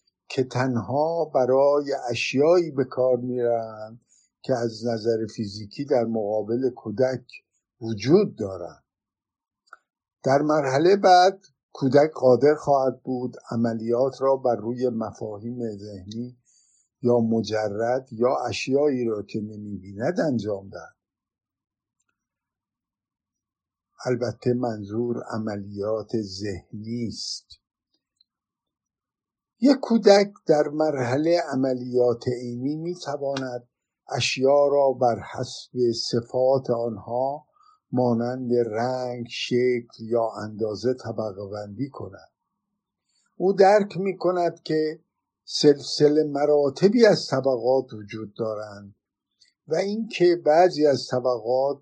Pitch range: 115-145 Hz